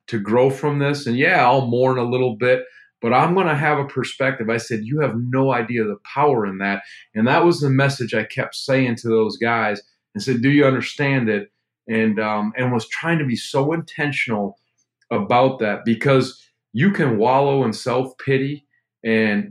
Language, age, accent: English, 40-59, American